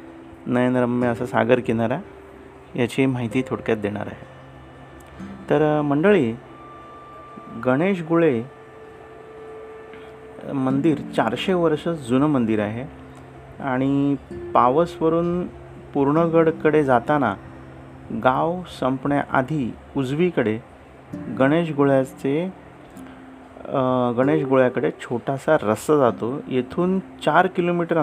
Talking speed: 75 wpm